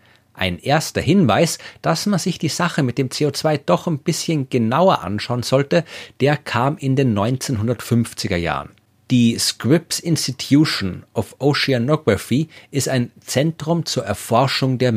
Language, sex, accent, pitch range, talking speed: German, male, German, 105-150 Hz, 135 wpm